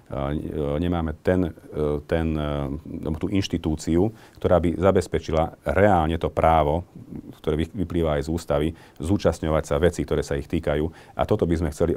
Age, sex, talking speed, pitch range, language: 40-59, male, 140 wpm, 75-85 Hz, Slovak